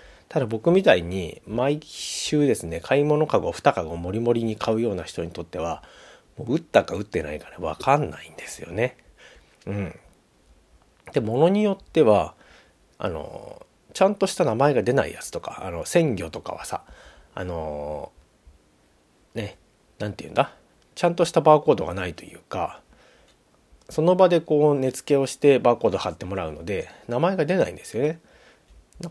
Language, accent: Japanese, native